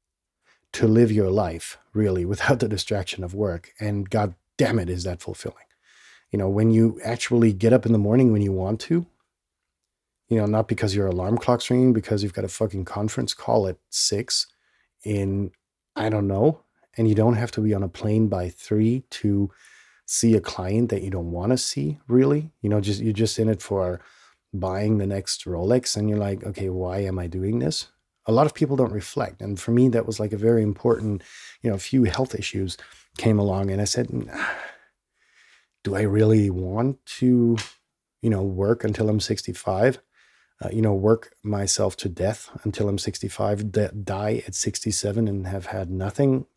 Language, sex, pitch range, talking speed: English, male, 95-115 Hz, 190 wpm